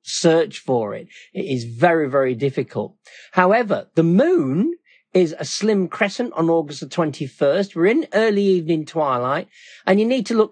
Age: 40-59